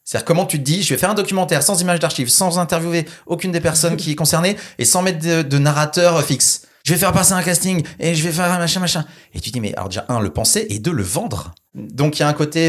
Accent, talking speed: French, 305 wpm